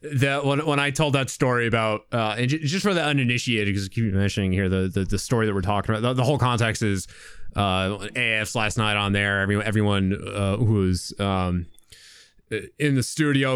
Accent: American